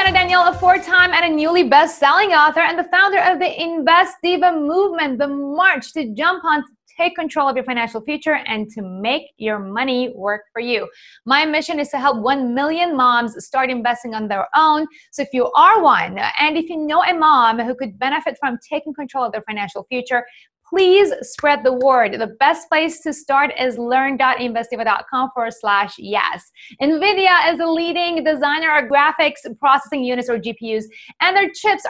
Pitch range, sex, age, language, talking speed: 250-335 Hz, female, 20-39, English, 185 wpm